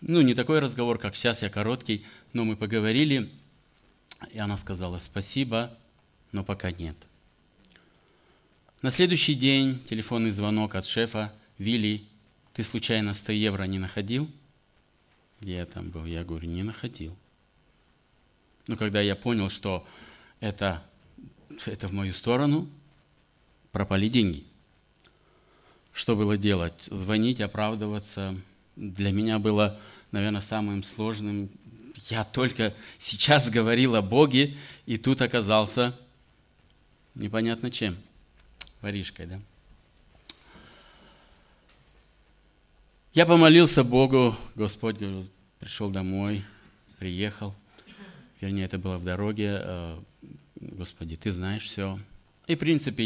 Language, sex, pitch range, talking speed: Russian, male, 95-120 Hz, 105 wpm